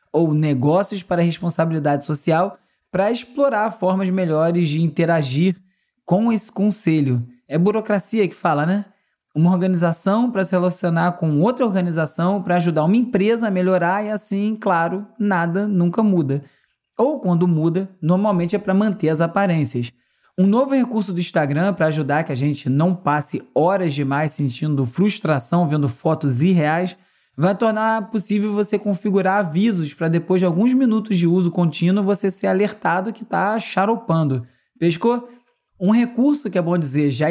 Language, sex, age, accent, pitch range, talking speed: Portuguese, male, 20-39, Brazilian, 160-210 Hz, 155 wpm